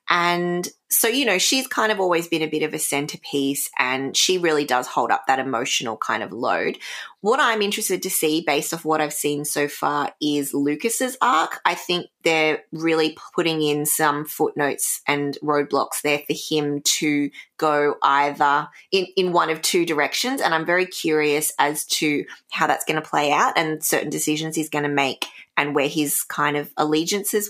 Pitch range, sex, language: 145-180 Hz, female, English